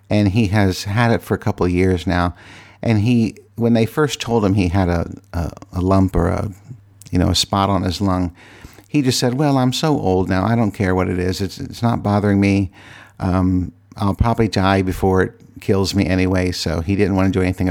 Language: English